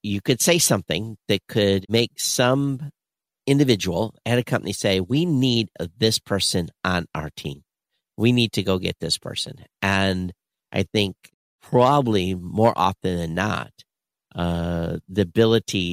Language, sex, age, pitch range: English, male, 50-69, 90-115 Hz